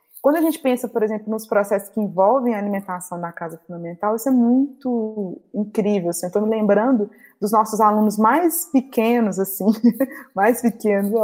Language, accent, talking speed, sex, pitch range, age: Portuguese, Brazilian, 170 wpm, female, 195-245 Hz, 20-39